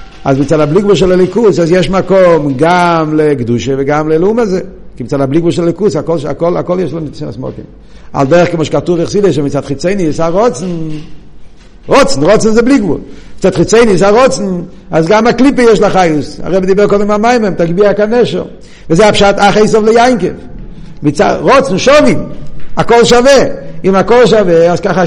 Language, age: Hebrew, 50-69